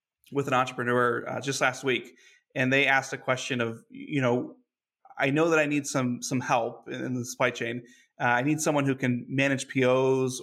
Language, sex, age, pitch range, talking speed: English, male, 30-49, 130-155 Hz, 200 wpm